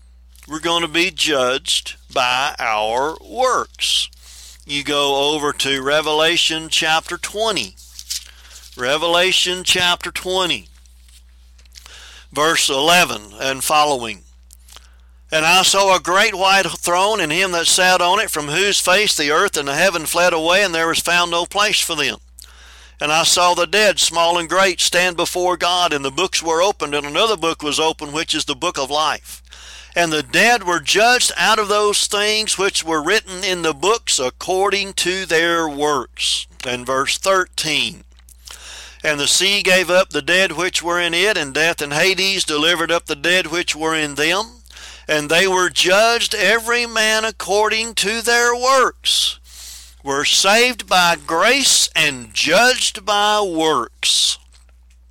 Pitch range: 135-185 Hz